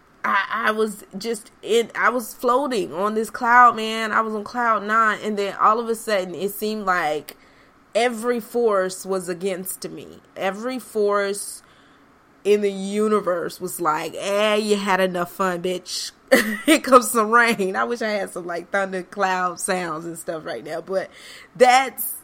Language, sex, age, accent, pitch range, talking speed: English, female, 20-39, American, 180-235 Hz, 170 wpm